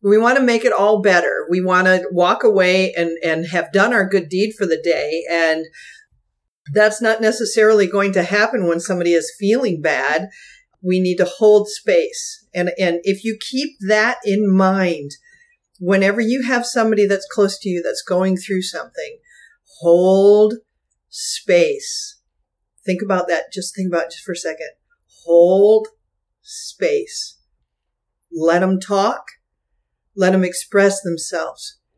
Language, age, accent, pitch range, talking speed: English, 50-69, American, 185-240 Hz, 150 wpm